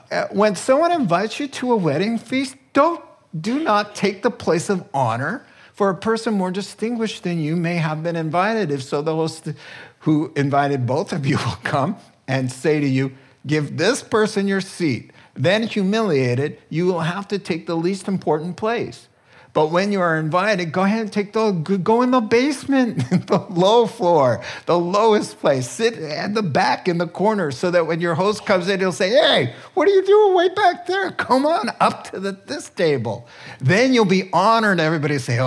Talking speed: 195 wpm